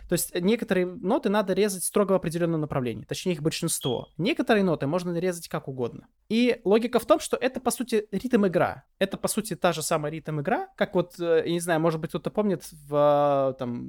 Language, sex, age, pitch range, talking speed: Russian, male, 20-39, 140-195 Hz, 200 wpm